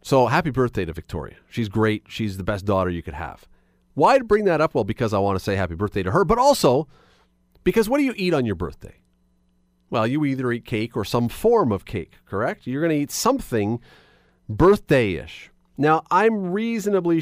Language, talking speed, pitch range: English, 200 wpm, 90-155 Hz